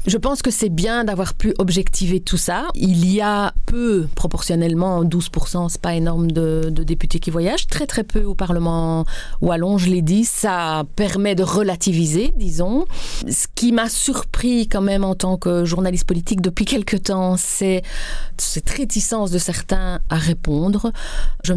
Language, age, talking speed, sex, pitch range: French, 30-49, 175 wpm, female, 165-200 Hz